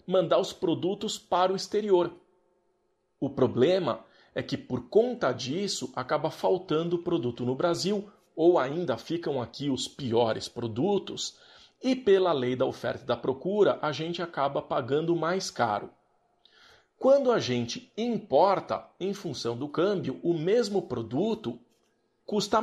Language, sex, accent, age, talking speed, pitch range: Portuguese, male, Brazilian, 40-59, 135 wpm, 130-190 Hz